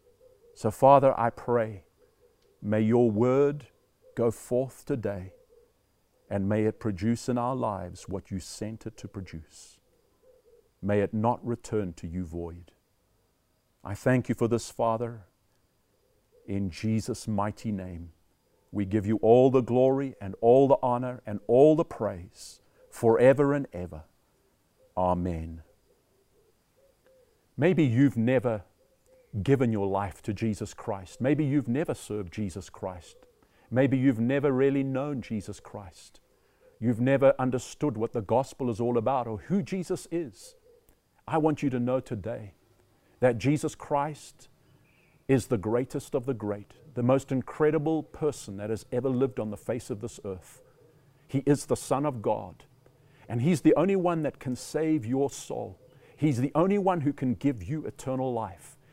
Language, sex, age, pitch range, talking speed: English, male, 50-69, 105-145 Hz, 150 wpm